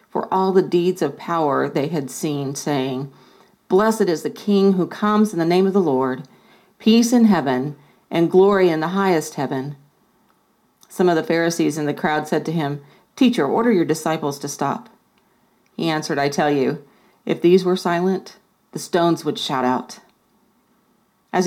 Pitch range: 150-195 Hz